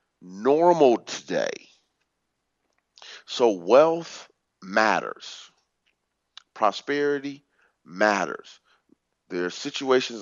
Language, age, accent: English, 40-59, American